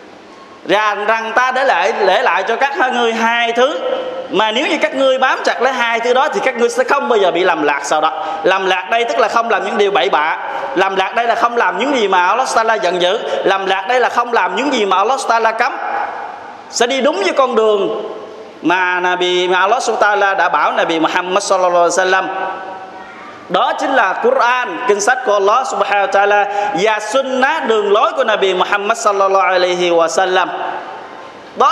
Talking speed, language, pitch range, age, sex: 215 wpm, Vietnamese, 190-260 Hz, 20-39, male